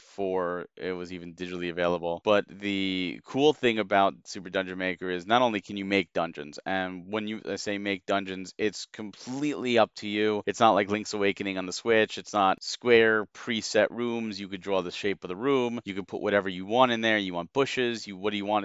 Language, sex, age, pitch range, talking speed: English, male, 40-59, 95-115 Hz, 225 wpm